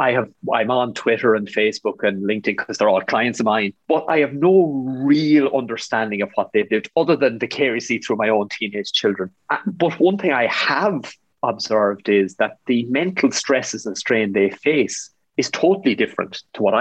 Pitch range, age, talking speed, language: 110-150 Hz, 30-49, 200 wpm, English